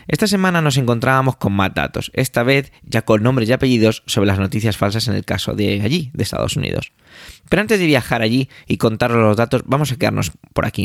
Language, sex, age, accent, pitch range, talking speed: Spanish, male, 20-39, Spanish, 110-140 Hz, 220 wpm